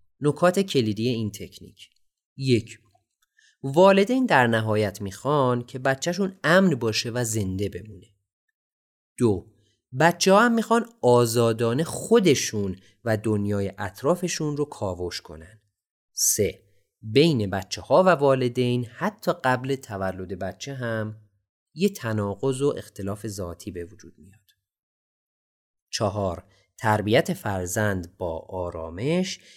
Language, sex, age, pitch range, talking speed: Persian, male, 30-49, 95-145 Hz, 105 wpm